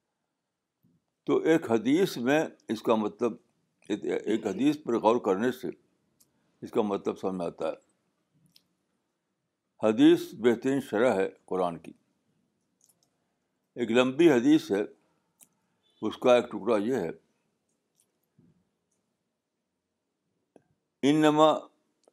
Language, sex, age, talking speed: Urdu, male, 60-79, 100 wpm